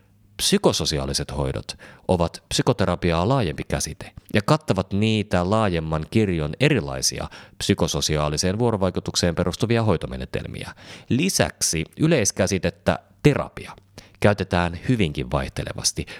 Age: 30-49